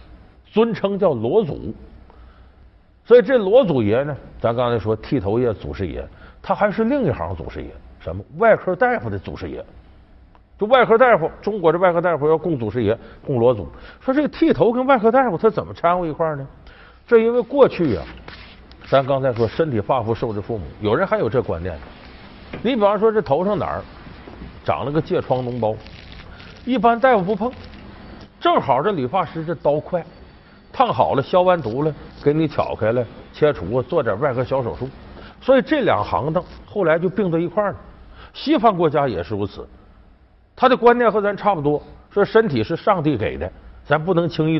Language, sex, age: Chinese, male, 50-69